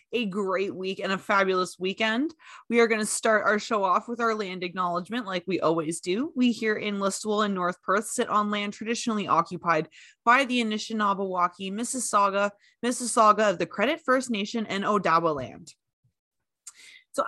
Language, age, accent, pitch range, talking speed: English, 20-39, American, 195-245 Hz, 170 wpm